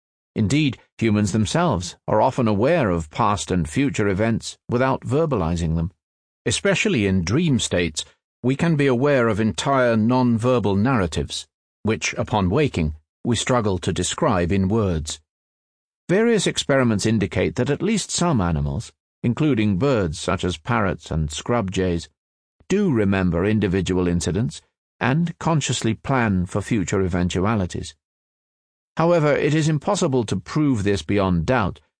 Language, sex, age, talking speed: German, male, 50-69, 130 wpm